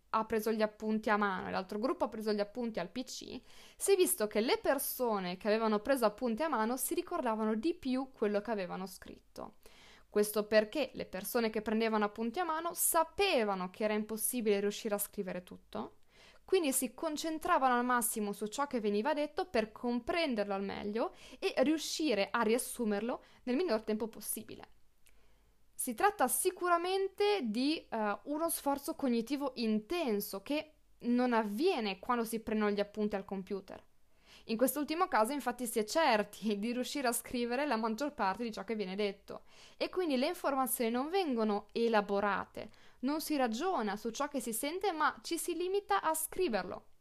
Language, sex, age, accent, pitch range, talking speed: Italian, female, 20-39, native, 215-300 Hz, 170 wpm